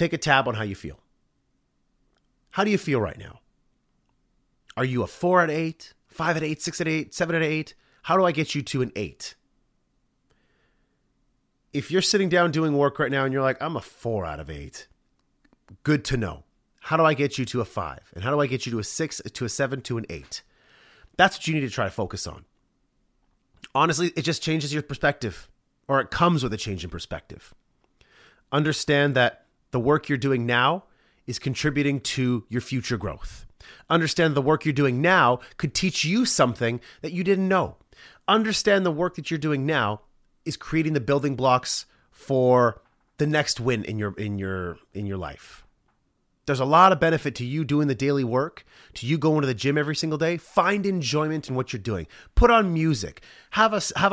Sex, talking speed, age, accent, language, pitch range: male, 205 wpm, 30-49, American, English, 120-160 Hz